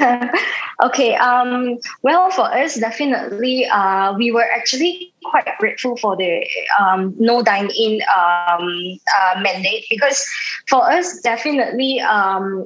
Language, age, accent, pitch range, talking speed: English, 20-39, Malaysian, 205-255 Hz, 125 wpm